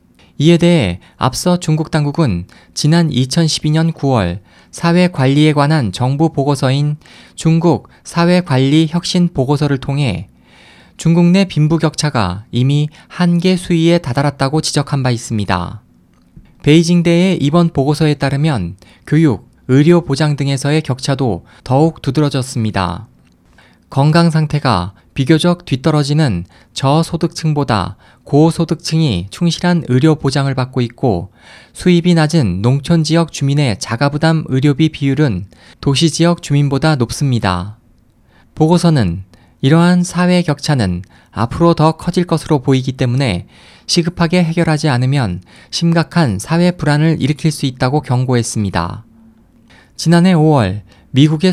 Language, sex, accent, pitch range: Korean, male, native, 120-165 Hz